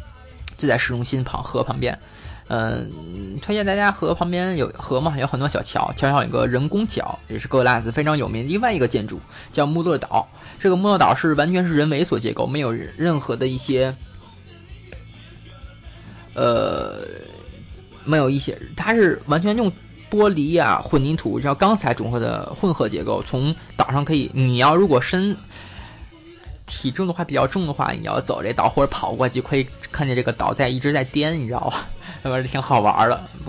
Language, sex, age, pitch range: Chinese, male, 20-39, 110-155 Hz